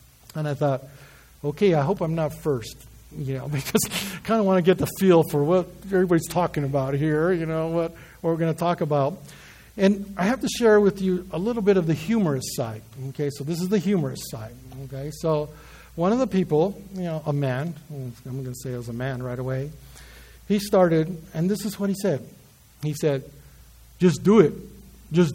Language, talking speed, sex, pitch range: English, 215 wpm, male, 150-210 Hz